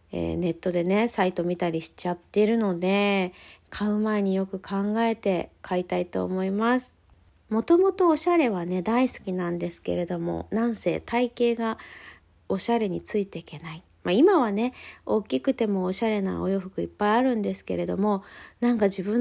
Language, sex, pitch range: Japanese, female, 175-235 Hz